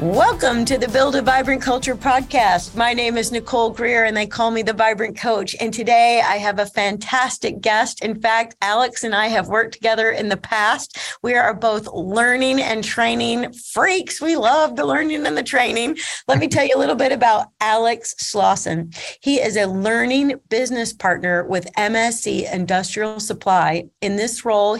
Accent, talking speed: American, 180 wpm